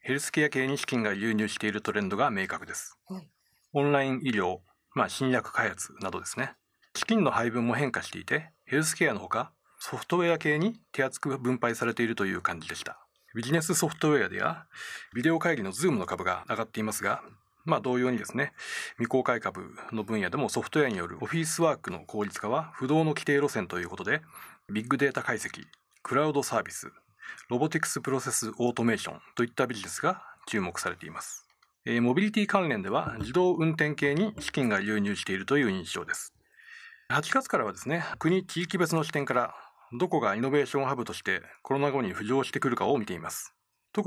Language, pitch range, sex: Japanese, 120-170 Hz, male